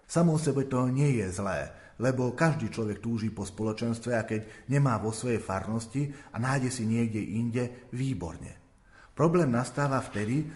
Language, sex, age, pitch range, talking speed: Slovak, male, 40-59, 115-140 Hz, 155 wpm